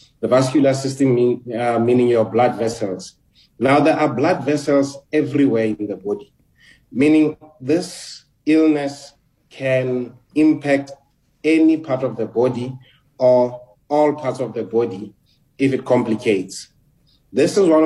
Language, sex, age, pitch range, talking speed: English, male, 30-49, 120-145 Hz, 135 wpm